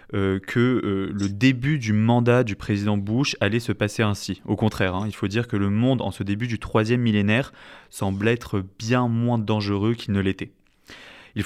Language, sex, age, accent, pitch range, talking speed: French, male, 20-39, French, 100-120 Hz, 200 wpm